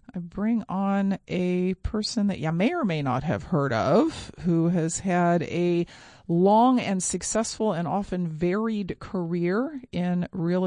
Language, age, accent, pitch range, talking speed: English, 40-59, American, 165-200 Hz, 150 wpm